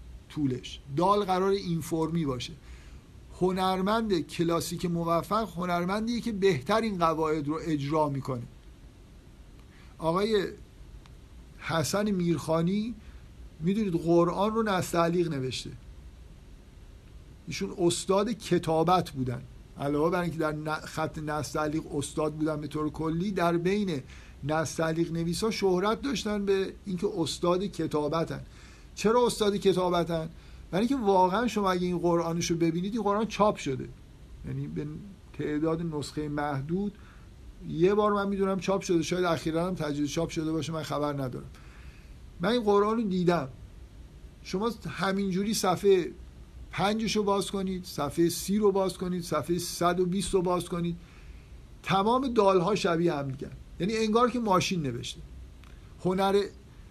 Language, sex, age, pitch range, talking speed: Persian, male, 50-69, 150-195 Hz, 120 wpm